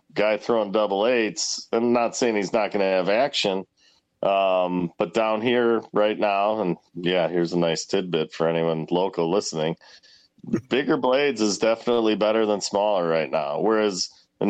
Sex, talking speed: male, 165 wpm